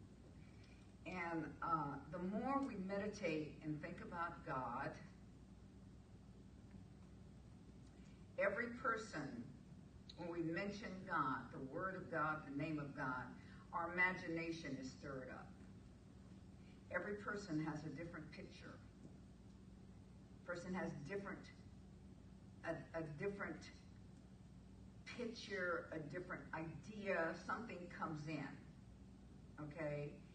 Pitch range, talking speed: 145-175 Hz, 95 wpm